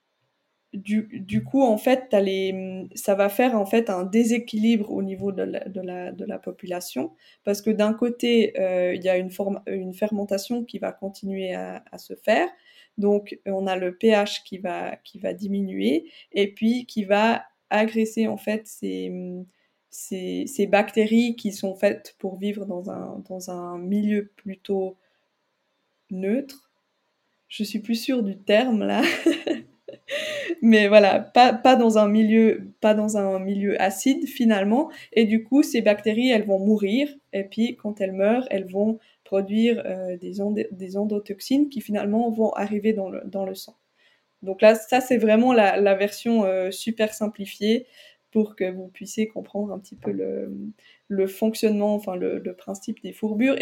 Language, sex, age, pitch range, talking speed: French, female, 20-39, 195-230 Hz, 170 wpm